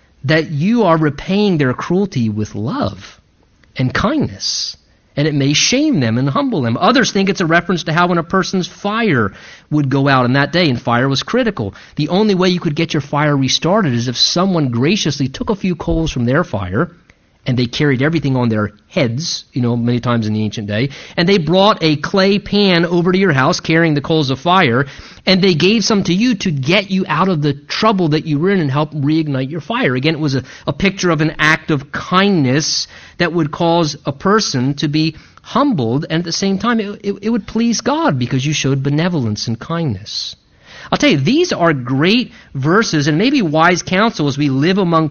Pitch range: 135-195 Hz